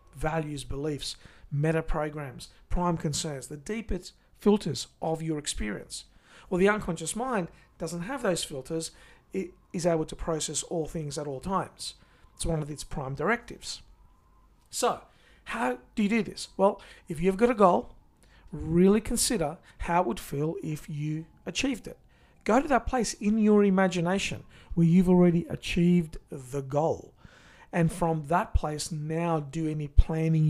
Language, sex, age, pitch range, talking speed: English, male, 50-69, 155-200 Hz, 155 wpm